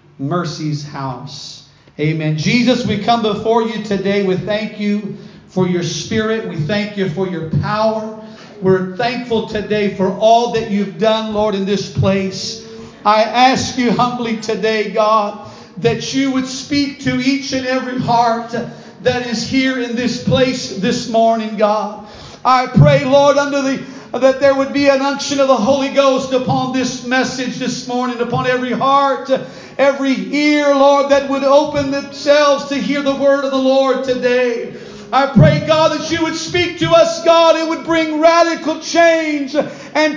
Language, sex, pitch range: English, male, 220-305 Hz